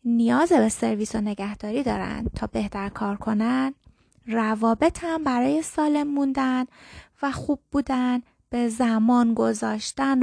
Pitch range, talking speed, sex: 225-290 Hz, 115 wpm, female